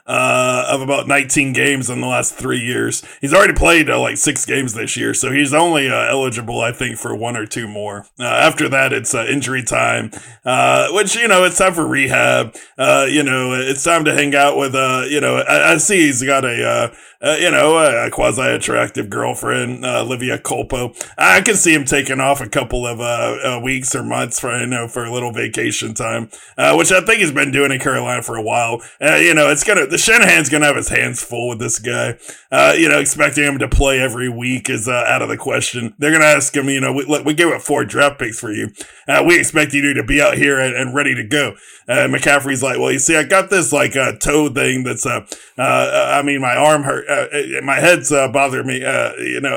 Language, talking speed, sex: English, 245 wpm, male